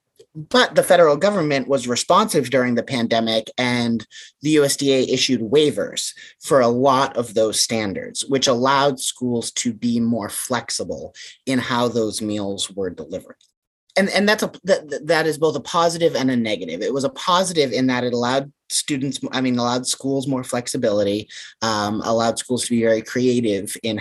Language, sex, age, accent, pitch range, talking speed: English, male, 30-49, American, 115-140 Hz, 170 wpm